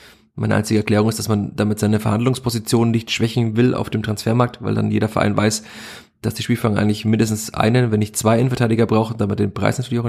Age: 20-39